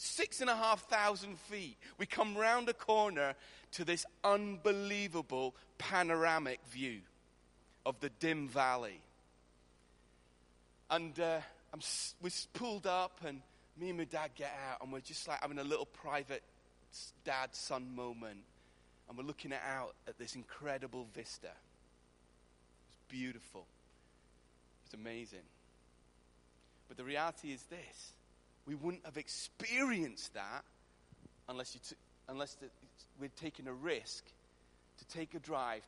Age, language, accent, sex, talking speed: 30-49, English, British, male, 125 wpm